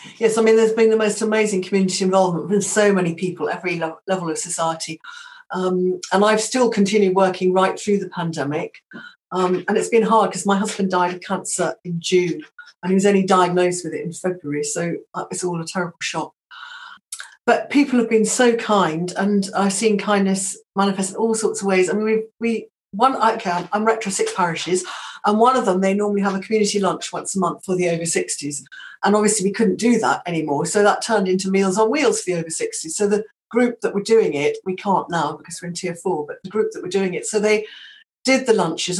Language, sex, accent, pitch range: English, female, British, 180-220 Hz